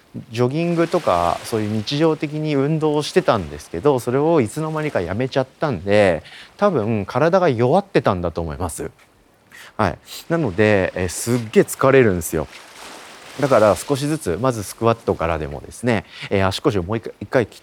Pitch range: 100-160 Hz